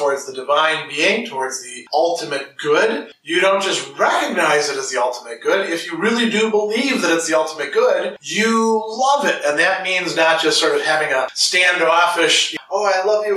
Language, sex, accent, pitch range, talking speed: English, male, American, 160-220 Hz, 200 wpm